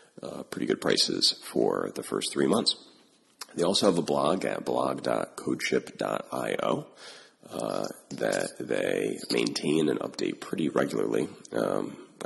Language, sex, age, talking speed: English, male, 30-49, 120 wpm